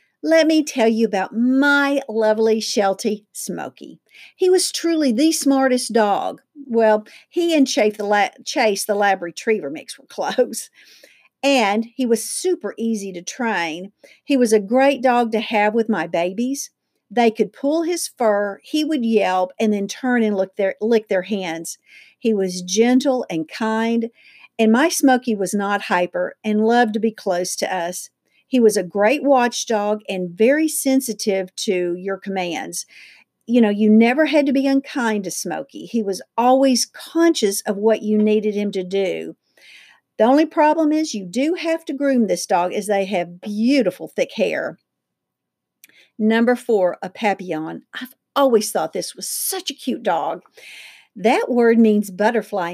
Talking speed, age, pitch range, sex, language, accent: 160 wpm, 50-69, 205-270 Hz, female, English, American